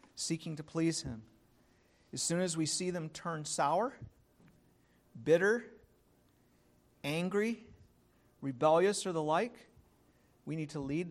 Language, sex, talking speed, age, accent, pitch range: English, male, 120 wpm, 50-69, American, 135-175 Hz